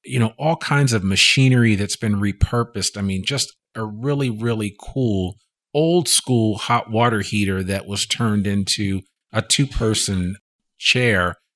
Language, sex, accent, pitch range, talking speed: English, male, American, 95-130 Hz, 145 wpm